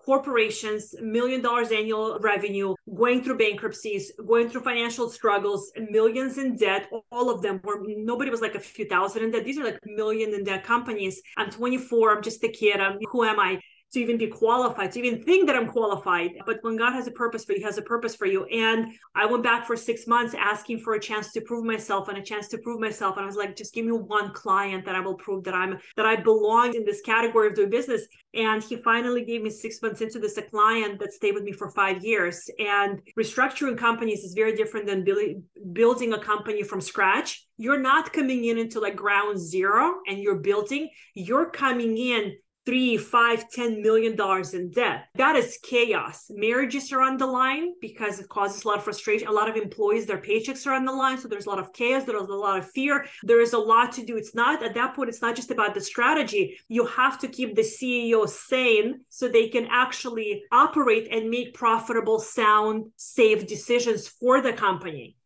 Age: 30-49